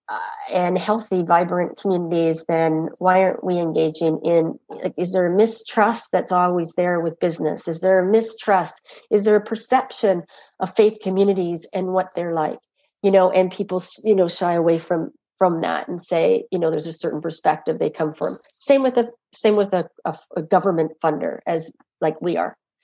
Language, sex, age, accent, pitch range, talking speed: English, female, 40-59, American, 175-220 Hz, 185 wpm